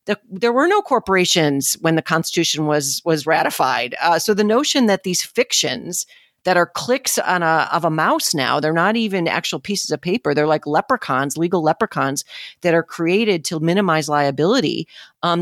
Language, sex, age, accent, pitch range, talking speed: English, female, 40-59, American, 165-220 Hz, 175 wpm